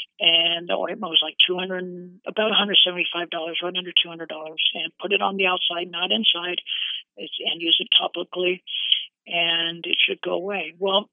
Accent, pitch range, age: American, 170-200 Hz, 50-69